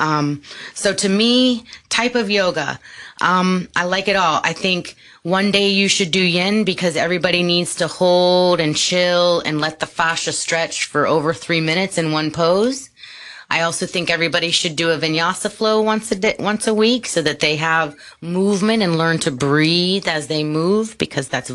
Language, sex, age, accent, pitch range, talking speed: English, female, 30-49, American, 160-210 Hz, 190 wpm